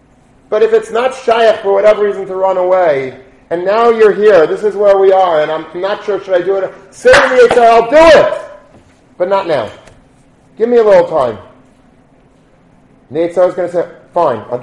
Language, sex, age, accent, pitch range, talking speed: English, male, 40-59, American, 140-195 Hz, 210 wpm